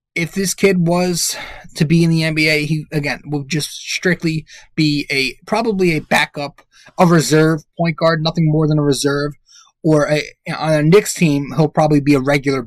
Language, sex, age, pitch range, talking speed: English, male, 20-39, 135-165 Hz, 185 wpm